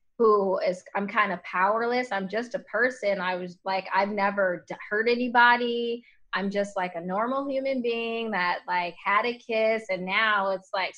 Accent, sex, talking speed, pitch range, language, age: American, female, 180 wpm, 190-230 Hz, English, 20-39